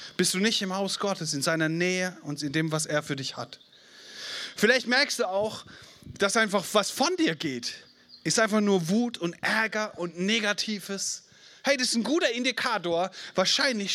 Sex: male